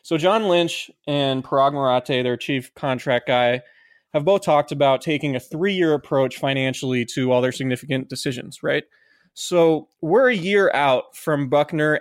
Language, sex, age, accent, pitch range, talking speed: English, male, 20-39, American, 135-160 Hz, 155 wpm